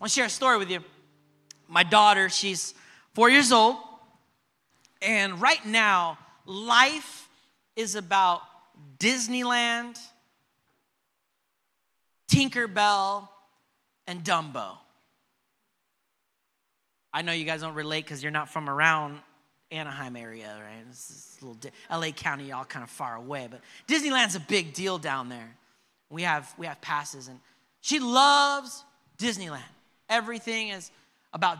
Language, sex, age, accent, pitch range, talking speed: English, male, 30-49, American, 155-220 Hz, 130 wpm